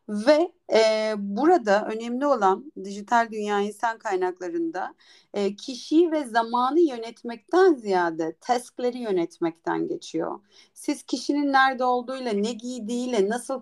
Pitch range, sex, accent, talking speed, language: 210-285 Hz, female, native, 110 wpm, Turkish